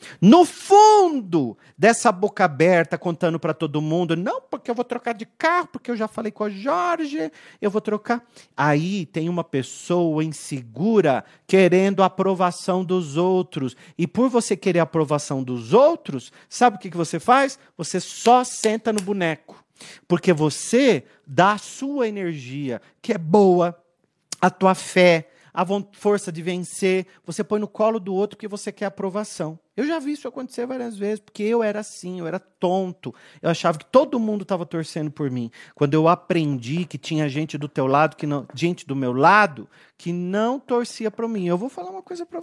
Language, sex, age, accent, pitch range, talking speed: Portuguese, male, 40-59, Brazilian, 155-215 Hz, 180 wpm